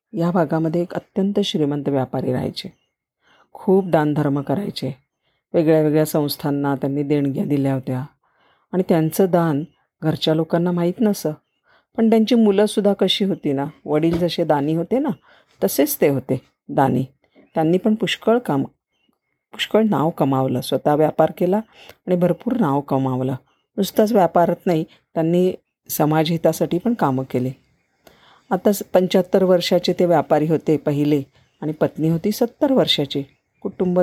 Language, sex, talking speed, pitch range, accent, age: Marathi, female, 130 wpm, 145-190 Hz, native, 40-59